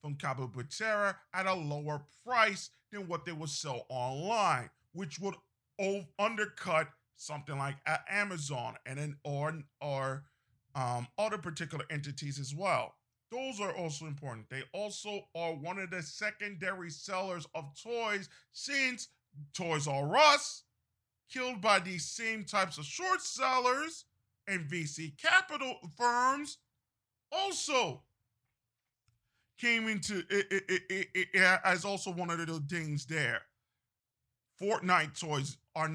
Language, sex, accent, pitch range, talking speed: English, male, American, 140-215 Hz, 135 wpm